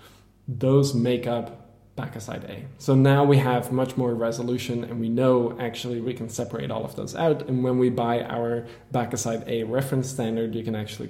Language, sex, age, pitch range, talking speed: English, male, 10-29, 110-130 Hz, 195 wpm